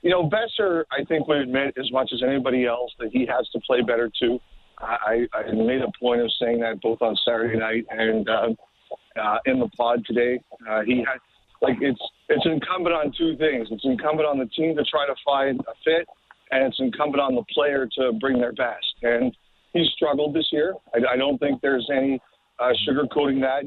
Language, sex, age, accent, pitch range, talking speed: English, male, 50-69, American, 130-155 Hz, 210 wpm